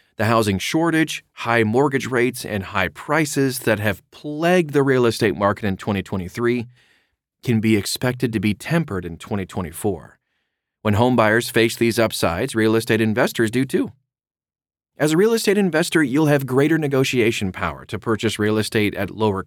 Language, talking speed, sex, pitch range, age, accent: English, 165 wpm, male, 105-140 Hz, 30-49, American